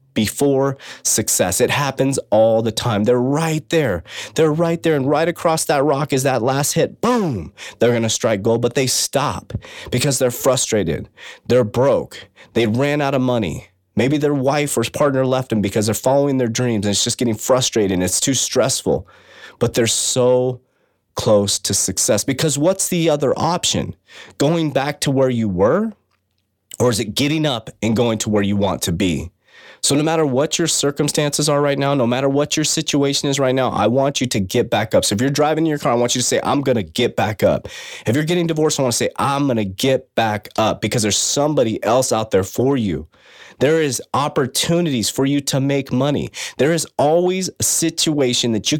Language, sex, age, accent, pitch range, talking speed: English, male, 30-49, American, 115-150 Hz, 210 wpm